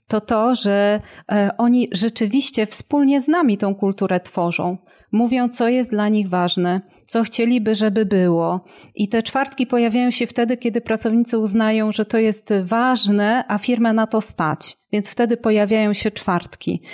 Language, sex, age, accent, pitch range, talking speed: Polish, female, 40-59, native, 195-225 Hz, 155 wpm